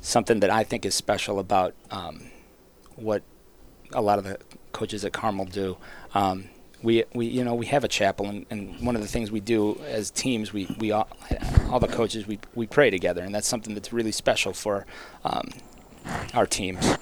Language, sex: English, male